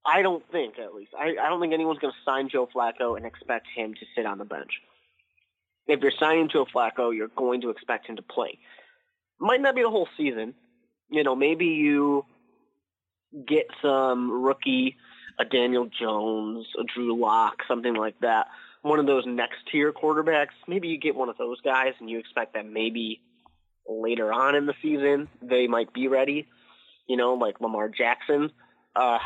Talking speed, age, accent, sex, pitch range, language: 185 wpm, 20-39, American, male, 115-150 Hz, English